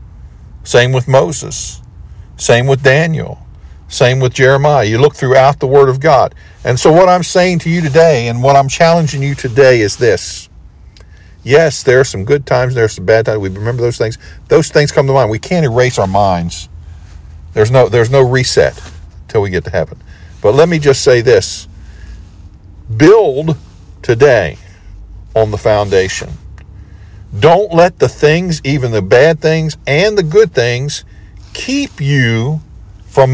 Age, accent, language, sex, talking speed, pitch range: 50-69, American, English, male, 165 wpm, 95-140 Hz